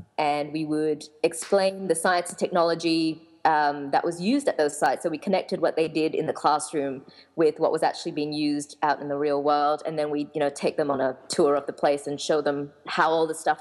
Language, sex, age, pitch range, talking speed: English, female, 20-39, 150-185 Hz, 240 wpm